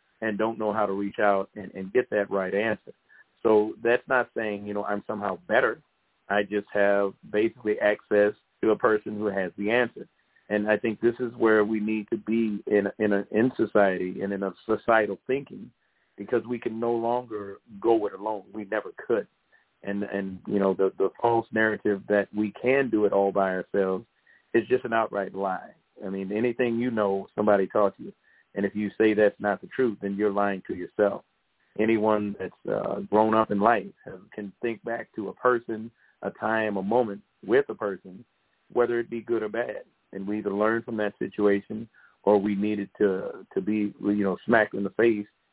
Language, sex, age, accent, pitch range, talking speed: English, male, 40-59, American, 100-115 Hz, 205 wpm